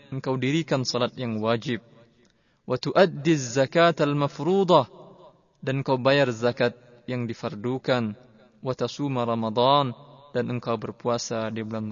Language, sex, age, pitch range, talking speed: Indonesian, male, 20-39, 115-135 Hz, 80 wpm